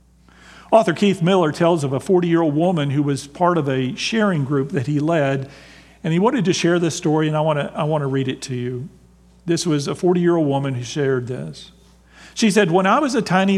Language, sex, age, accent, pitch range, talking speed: English, male, 50-69, American, 140-180 Hz, 215 wpm